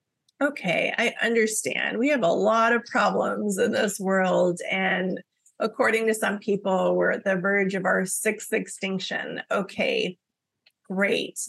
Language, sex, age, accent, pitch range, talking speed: English, female, 30-49, American, 190-230 Hz, 140 wpm